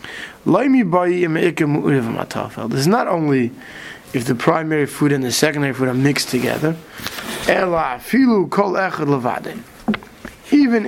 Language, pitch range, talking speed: English, 145-190 Hz, 90 wpm